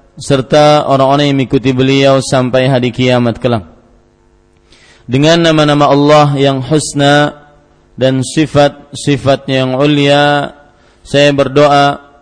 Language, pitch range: Malay, 130-145 Hz